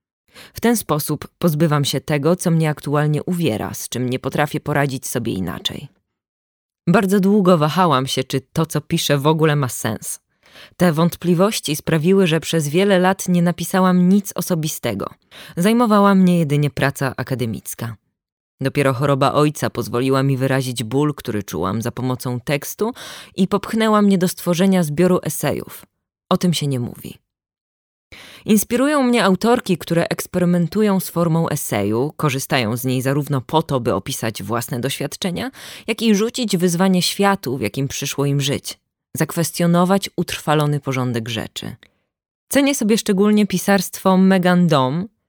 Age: 20-39